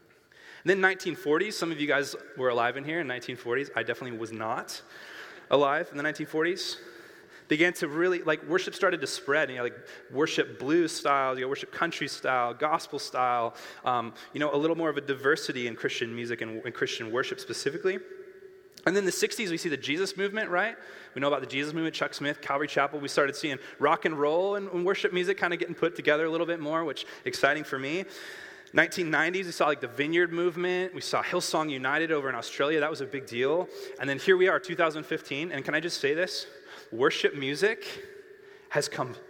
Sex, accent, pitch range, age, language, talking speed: male, American, 145-215 Hz, 20-39, English, 205 wpm